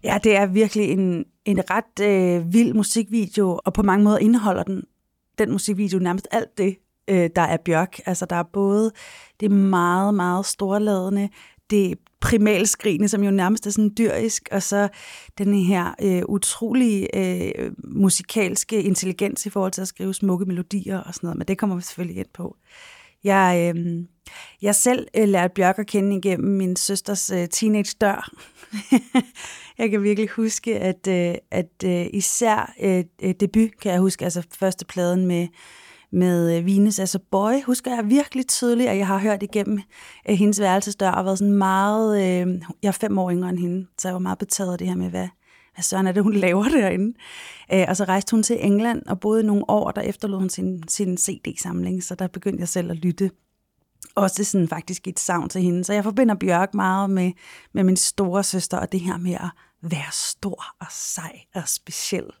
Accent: native